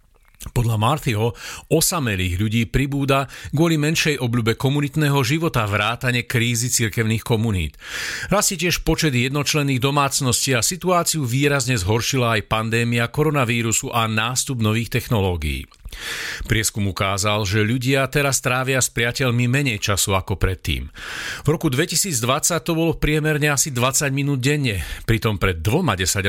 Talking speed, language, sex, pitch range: 130 wpm, Slovak, male, 110-145 Hz